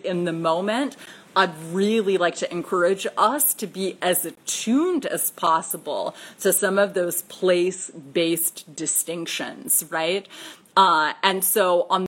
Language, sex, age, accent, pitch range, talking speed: English, female, 30-49, American, 175-215 Hz, 130 wpm